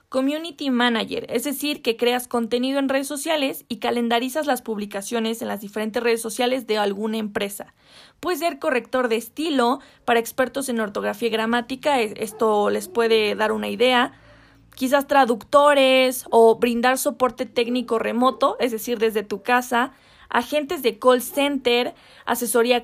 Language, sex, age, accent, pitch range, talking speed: Spanish, female, 20-39, Mexican, 230-270 Hz, 145 wpm